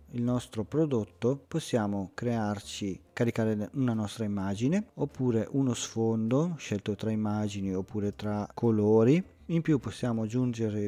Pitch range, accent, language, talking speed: 105-125 Hz, native, Italian, 120 wpm